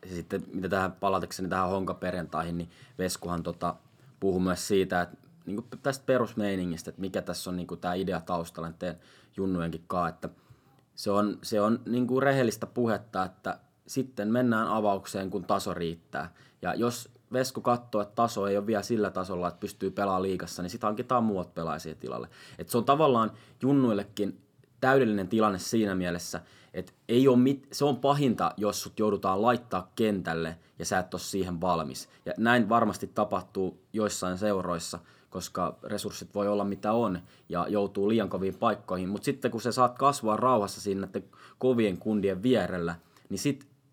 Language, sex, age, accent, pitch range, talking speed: Finnish, male, 20-39, native, 95-125 Hz, 165 wpm